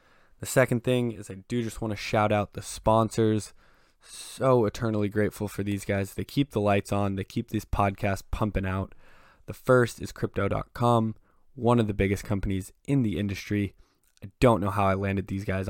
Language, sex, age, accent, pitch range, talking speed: English, male, 20-39, American, 100-115 Hz, 190 wpm